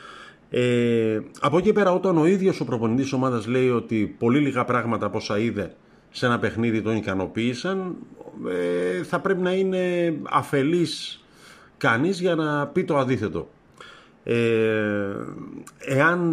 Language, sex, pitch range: Greek, male, 105-140 Hz